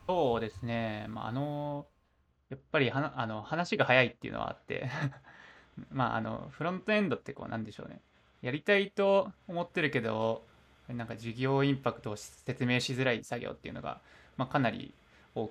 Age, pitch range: 20-39, 115-155 Hz